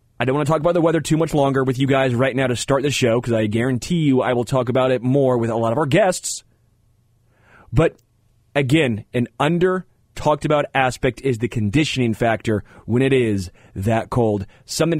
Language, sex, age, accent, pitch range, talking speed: English, male, 30-49, American, 115-150 Hz, 210 wpm